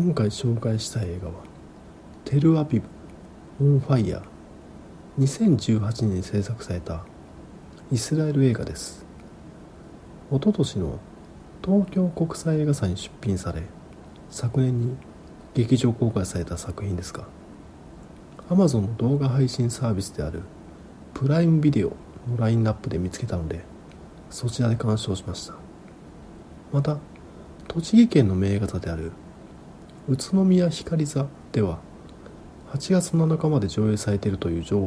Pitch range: 95-140 Hz